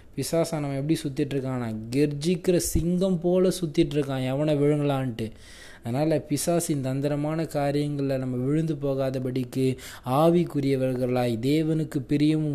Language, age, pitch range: Tamil, 20-39, 115-150 Hz